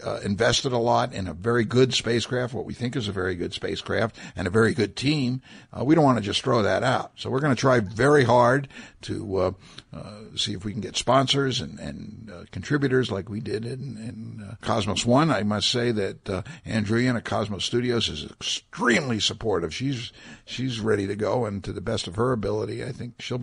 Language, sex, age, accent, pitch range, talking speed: English, male, 60-79, American, 100-120 Hz, 220 wpm